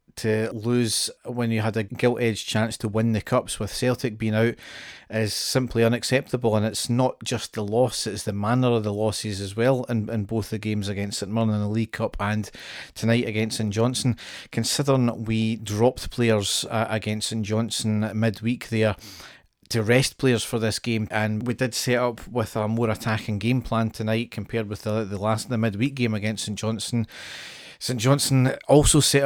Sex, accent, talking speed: male, British, 190 wpm